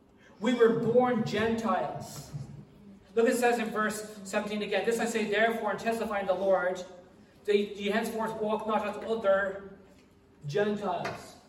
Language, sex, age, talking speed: English, male, 40-59, 145 wpm